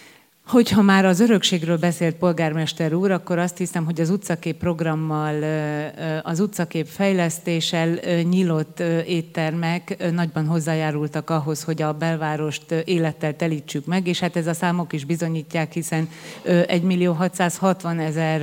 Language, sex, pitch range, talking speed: Hungarian, female, 155-175 Hz, 125 wpm